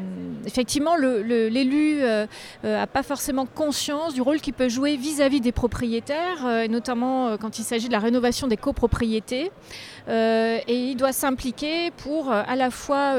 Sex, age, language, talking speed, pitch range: female, 40-59, French, 165 wpm, 220-275 Hz